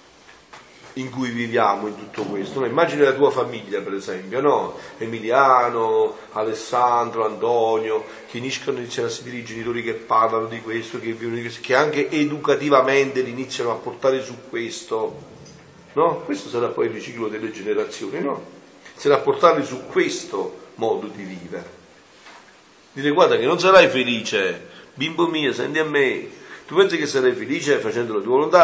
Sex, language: male, Italian